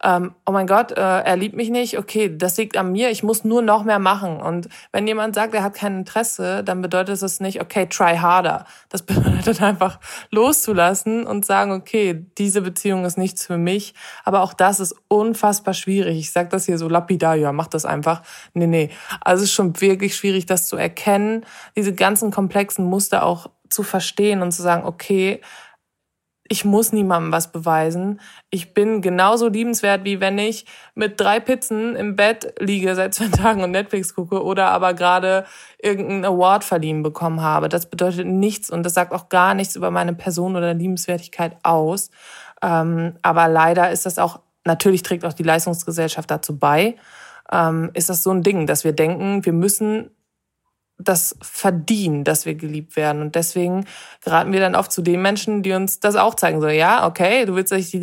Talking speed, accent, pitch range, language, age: 185 wpm, German, 170-205 Hz, German, 20-39